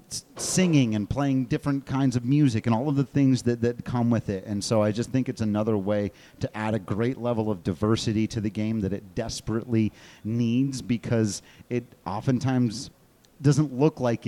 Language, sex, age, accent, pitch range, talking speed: English, male, 30-49, American, 105-125 Hz, 190 wpm